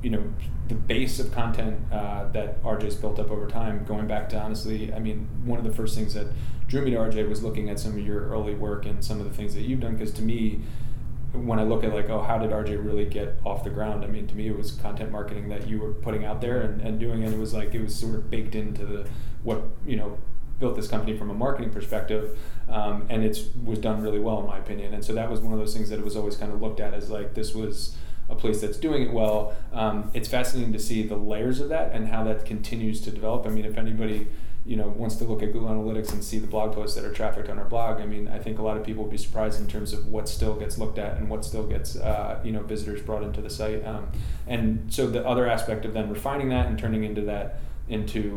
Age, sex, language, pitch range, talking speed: 30-49, male, English, 105-110 Hz, 270 wpm